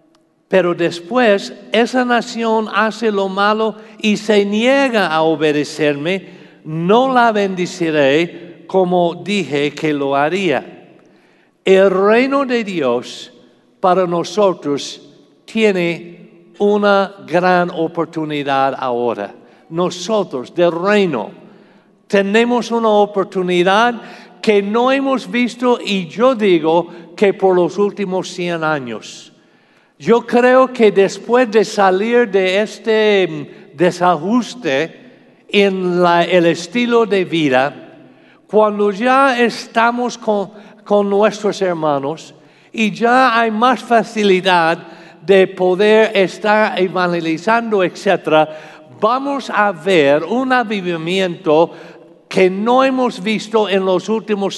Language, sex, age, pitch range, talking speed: Spanish, male, 60-79, 170-220 Hz, 100 wpm